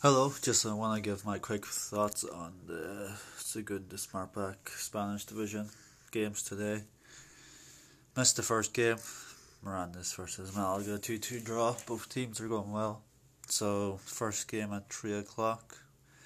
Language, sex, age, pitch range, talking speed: English, male, 20-39, 100-115 Hz, 135 wpm